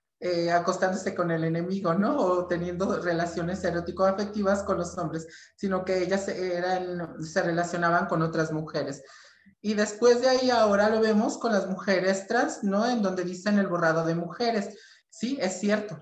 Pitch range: 175-210 Hz